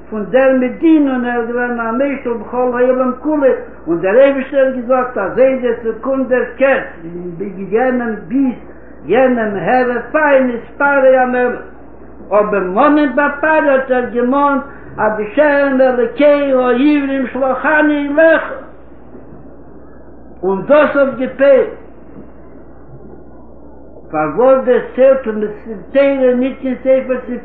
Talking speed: 60 wpm